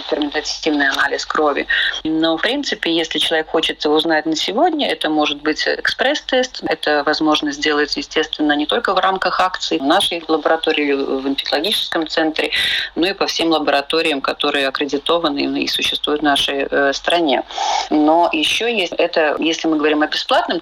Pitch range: 145-180 Hz